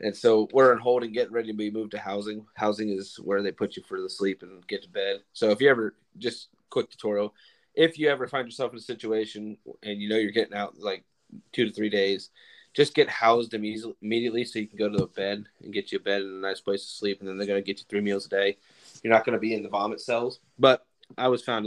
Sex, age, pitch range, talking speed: male, 20-39, 105-120 Hz, 270 wpm